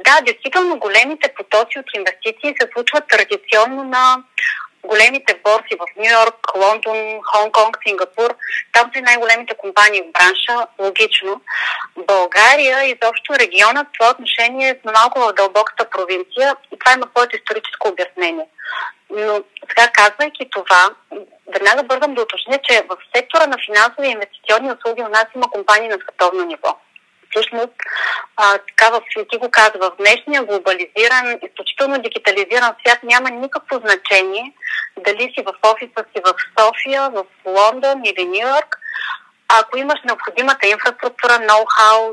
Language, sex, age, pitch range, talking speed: Bulgarian, female, 30-49, 205-250 Hz, 140 wpm